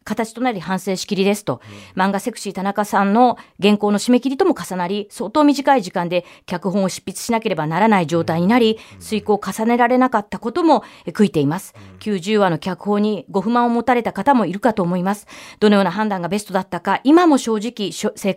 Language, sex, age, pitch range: Japanese, female, 40-59, 170-235 Hz